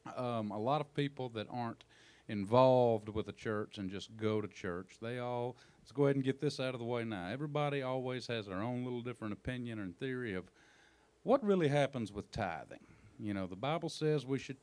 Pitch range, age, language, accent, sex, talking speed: 95-130 Hz, 40-59, English, American, male, 215 wpm